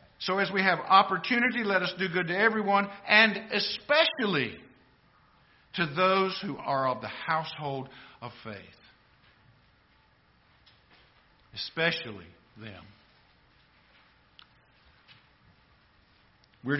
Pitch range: 135-190 Hz